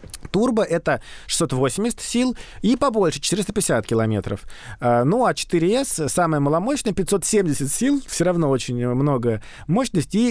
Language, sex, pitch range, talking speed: Russian, male, 130-185 Hz, 115 wpm